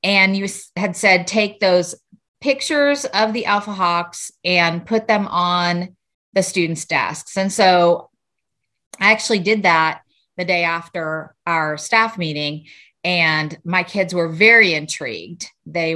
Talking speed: 140 wpm